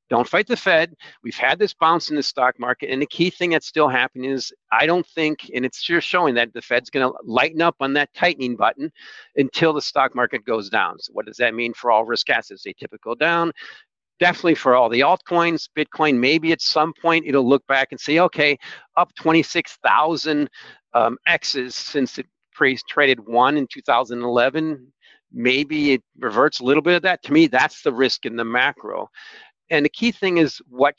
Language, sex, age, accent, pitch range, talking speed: English, male, 50-69, American, 125-175 Hz, 200 wpm